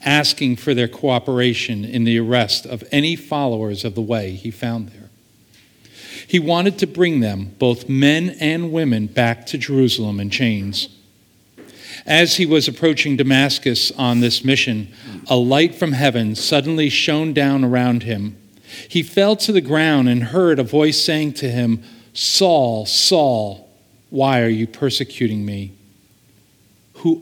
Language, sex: English, male